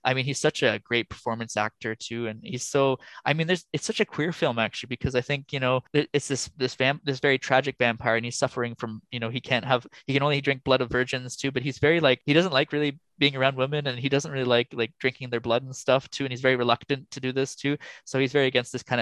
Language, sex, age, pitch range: English, male, 20-39, 115-135 Hz